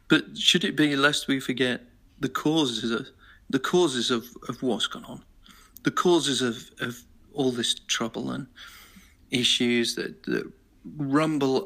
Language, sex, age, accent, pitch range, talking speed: English, male, 40-59, British, 115-130 Hz, 150 wpm